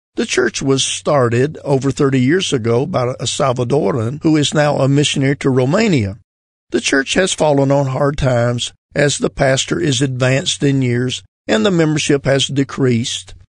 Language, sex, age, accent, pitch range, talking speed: English, male, 50-69, American, 120-145 Hz, 165 wpm